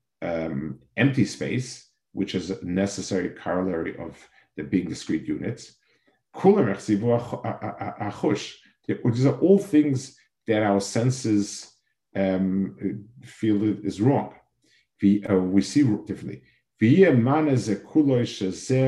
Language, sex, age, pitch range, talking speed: English, male, 50-69, 95-125 Hz, 90 wpm